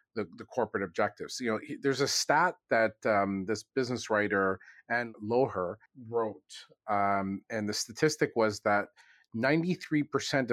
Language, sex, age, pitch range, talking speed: English, male, 40-59, 110-145 Hz, 135 wpm